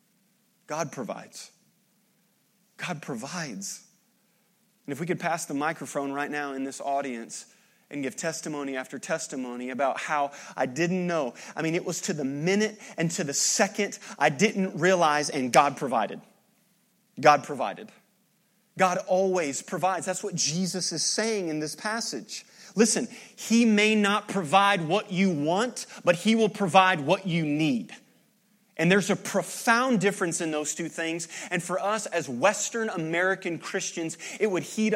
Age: 30-49